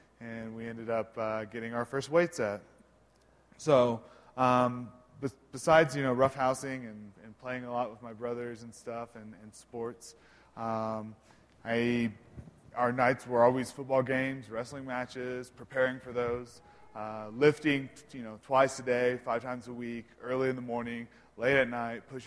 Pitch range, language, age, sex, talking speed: 115-130 Hz, English, 20-39, male, 165 wpm